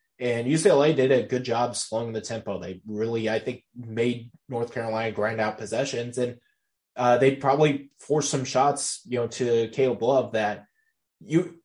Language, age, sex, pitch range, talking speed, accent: English, 20-39, male, 110-130 Hz, 170 wpm, American